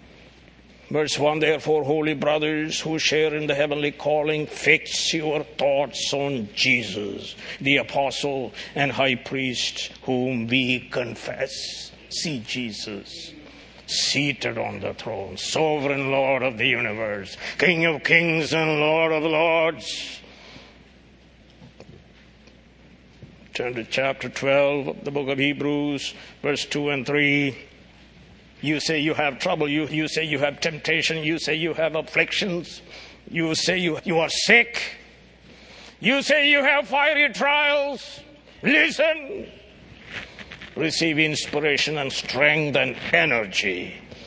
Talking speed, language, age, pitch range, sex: 120 wpm, English, 60-79, 135-160 Hz, male